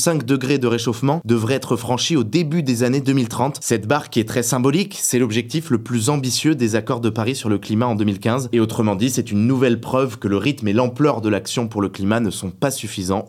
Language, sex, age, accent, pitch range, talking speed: French, male, 20-39, French, 110-135 Hz, 240 wpm